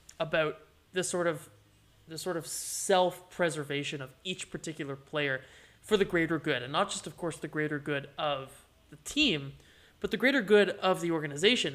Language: English